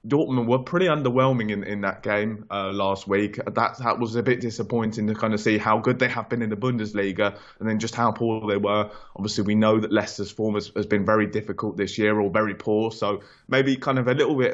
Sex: male